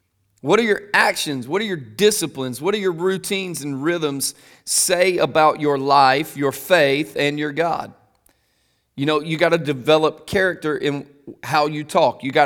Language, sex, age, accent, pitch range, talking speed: English, male, 30-49, American, 145-185 Hz, 175 wpm